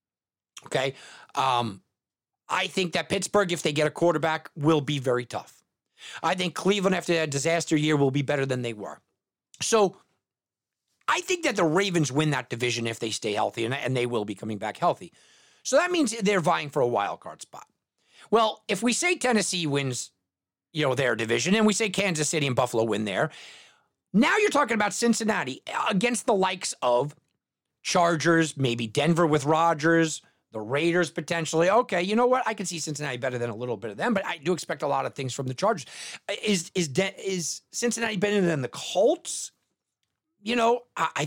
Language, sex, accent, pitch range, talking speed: English, male, American, 140-205 Hz, 195 wpm